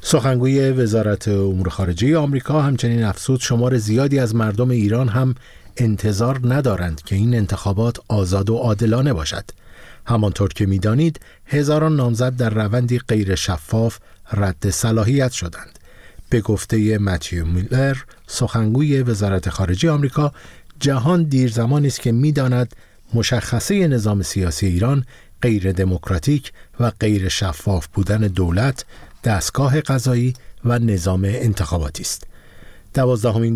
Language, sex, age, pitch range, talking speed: Persian, male, 50-69, 100-130 Hz, 120 wpm